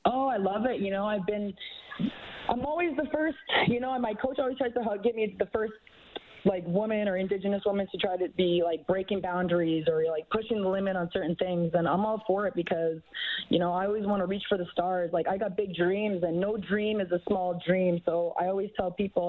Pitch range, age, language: 175-215 Hz, 20-39, English